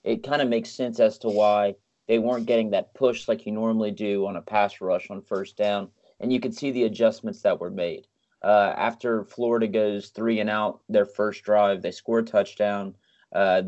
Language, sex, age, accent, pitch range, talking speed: English, male, 30-49, American, 100-115 Hz, 210 wpm